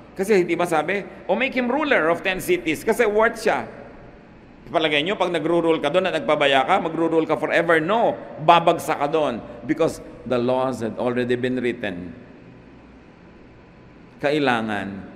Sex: male